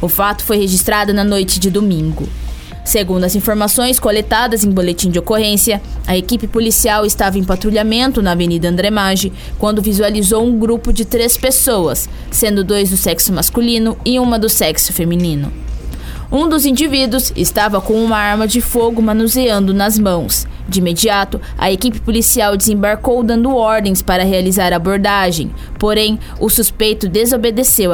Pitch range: 195-230 Hz